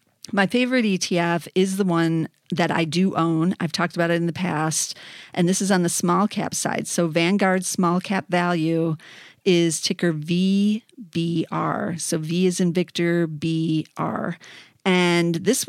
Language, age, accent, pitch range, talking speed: English, 40-59, American, 165-190 Hz, 155 wpm